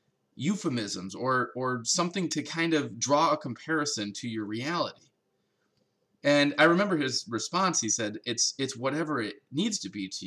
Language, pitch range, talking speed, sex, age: English, 125-185 Hz, 165 wpm, male, 20-39